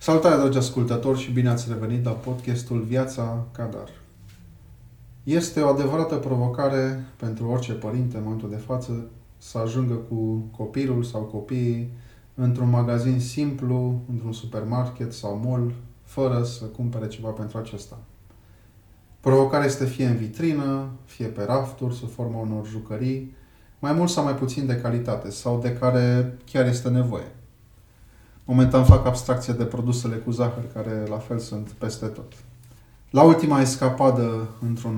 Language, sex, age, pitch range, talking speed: Romanian, male, 20-39, 110-130 Hz, 140 wpm